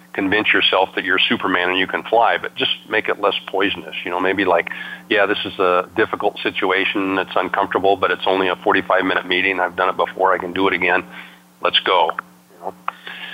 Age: 50-69